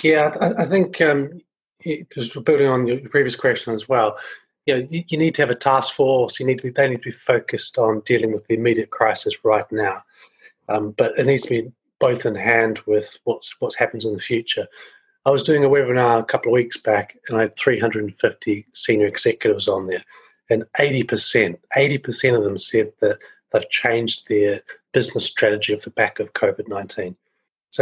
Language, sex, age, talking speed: English, male, 40-59, 195 wpm